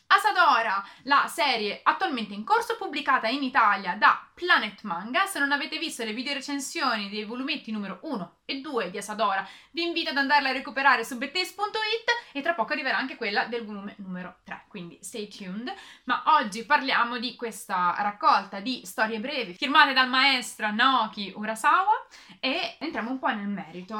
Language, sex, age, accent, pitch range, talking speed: Italian, female, 20-39, native, 210-295 Hz, 170 wpm